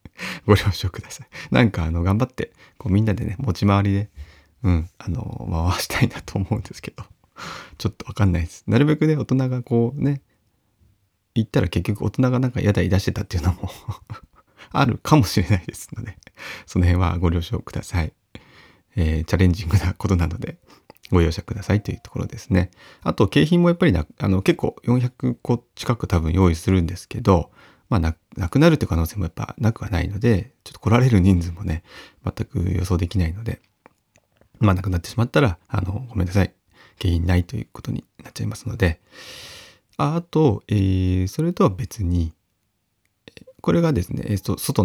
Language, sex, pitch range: Japanese, male, 90-115 Hz